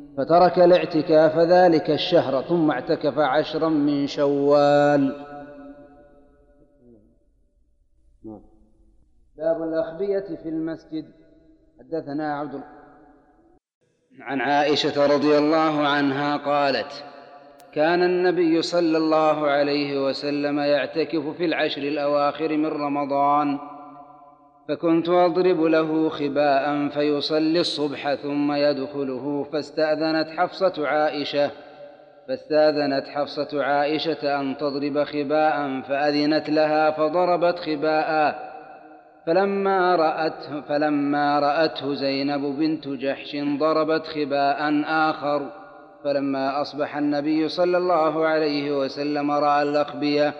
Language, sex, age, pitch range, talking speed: Arabic, male, 40-59, 145-155 Hz, 85 wpm